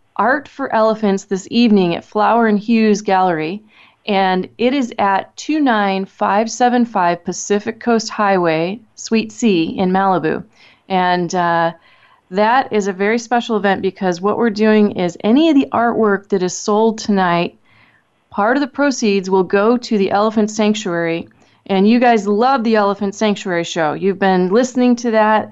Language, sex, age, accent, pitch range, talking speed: English, female, 30-49, American, 190-240 Hz, 155 wpm